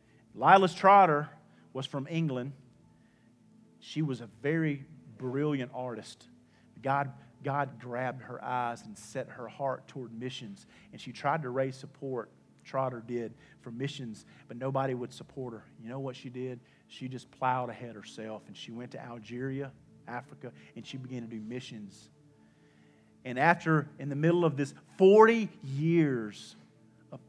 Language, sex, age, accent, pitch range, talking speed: English, male, 40-59, American, 120-150 Hz, 150 wpm